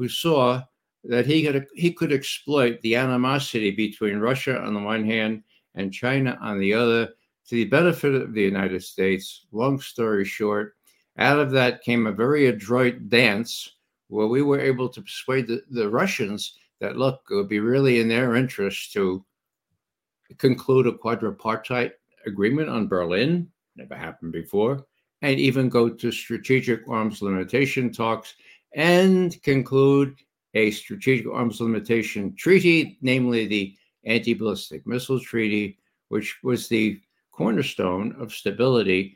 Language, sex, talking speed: English, male, 140 wpm